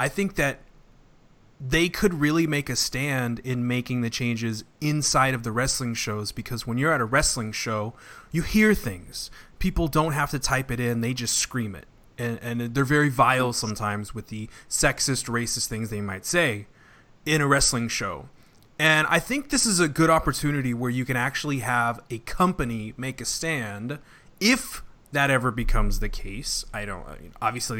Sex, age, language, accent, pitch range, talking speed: male, 30-49, English, American, 115-150 Hz, 185 wpm